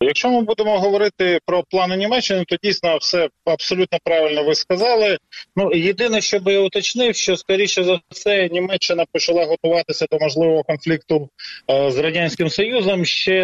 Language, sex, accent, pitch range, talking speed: Ukrainian, male, native, 150-185 Hz, 155 wpm